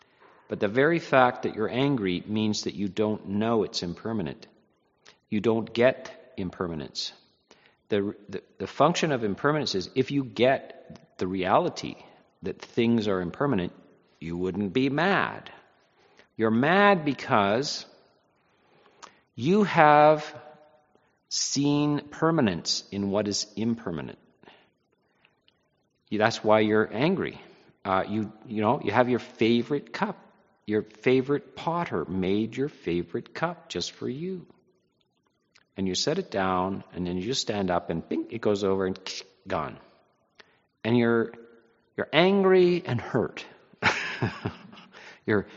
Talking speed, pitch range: 125 wpm, 105-150 Hz